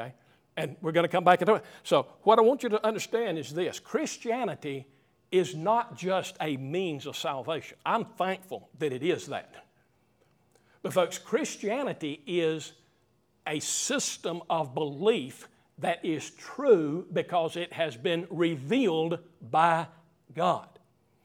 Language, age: English, 50-69